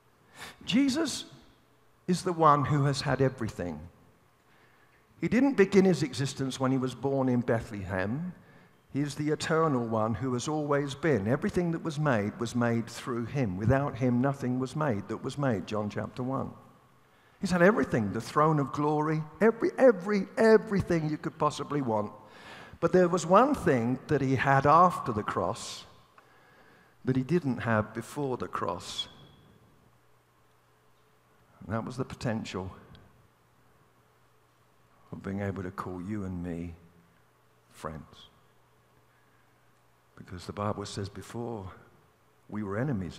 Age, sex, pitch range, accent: 50-69, male, 105-155 Hz, British